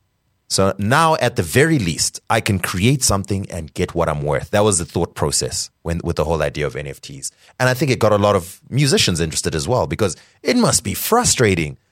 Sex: male